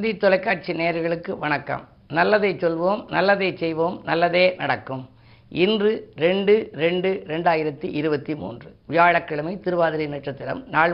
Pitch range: 160-200 Hz